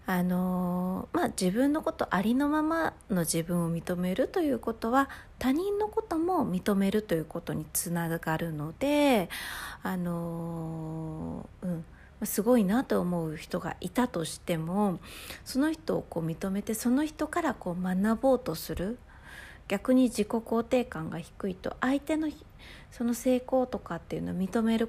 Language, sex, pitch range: Japanese, female, 170-240 Hz